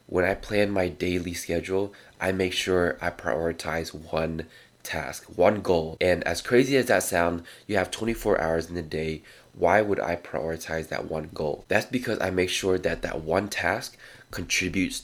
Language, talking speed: English, 180 wpm